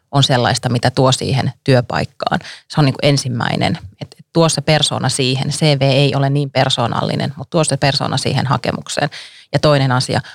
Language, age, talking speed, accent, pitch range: Finnish, 30-49, 170 wpm, native, 125-145 Hz